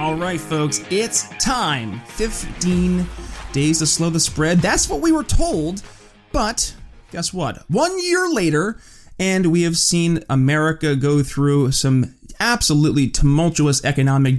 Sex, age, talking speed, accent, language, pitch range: male, 20-39, 135 wpm, American, English, 140-180 Hz